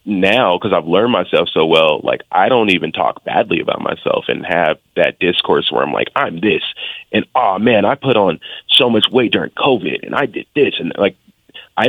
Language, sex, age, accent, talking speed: English, male, 30-49, American, 210 wpm